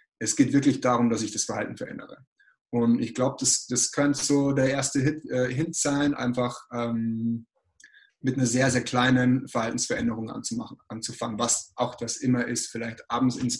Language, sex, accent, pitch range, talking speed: German, male, German, 120-150 Hz, 175 wpm